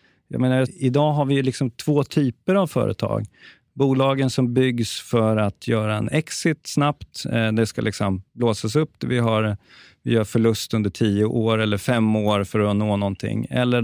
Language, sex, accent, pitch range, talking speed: Swedish, male, native, 110-140 Hz, 175 wpm